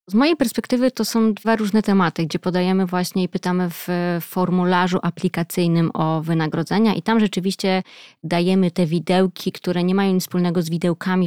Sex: female